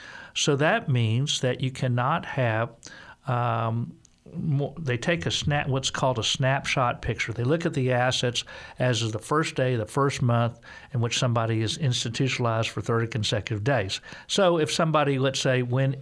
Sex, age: male, 50-69